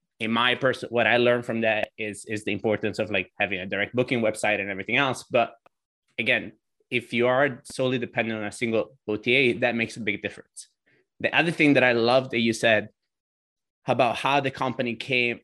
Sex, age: male, 20-39